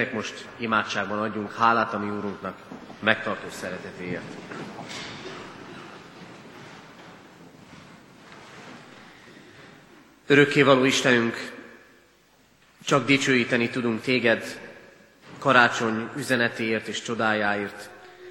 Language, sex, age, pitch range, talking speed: Hungarian, male, 30-49, 110-130 Hz, 60 wpm